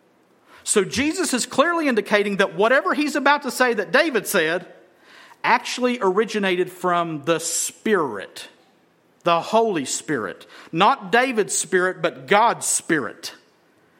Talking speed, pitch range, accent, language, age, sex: 120 wpm, 180-250 Hz, American, English, 50-69, male